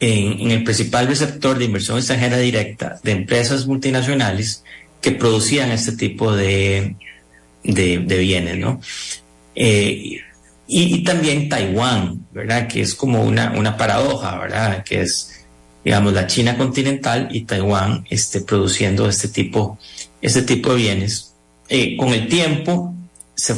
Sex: male